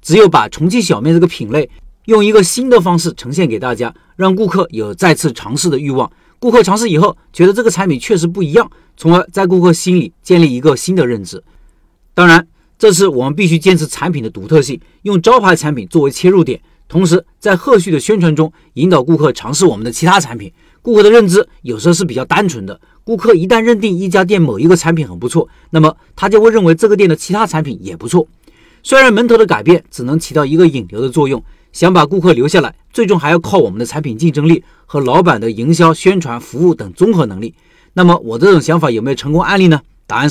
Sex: male